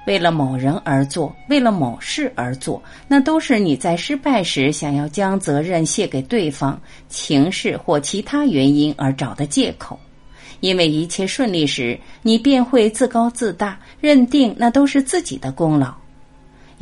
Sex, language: female, Chinese